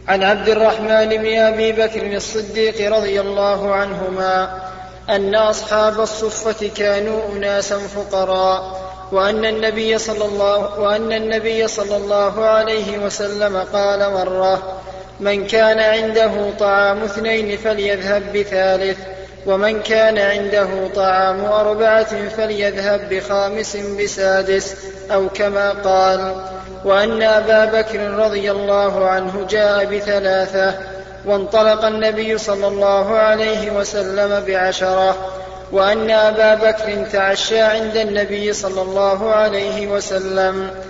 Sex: male